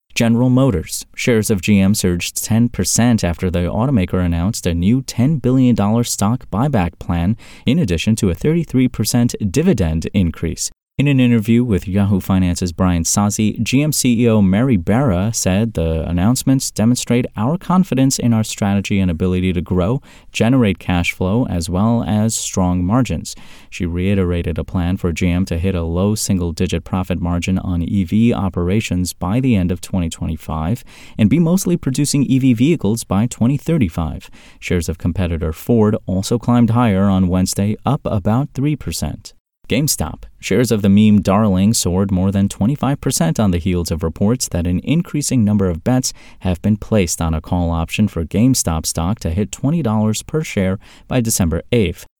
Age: 30-49